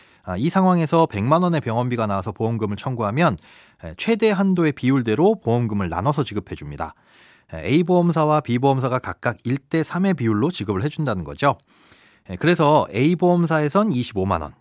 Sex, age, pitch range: male, 30-49, 110-165 Hz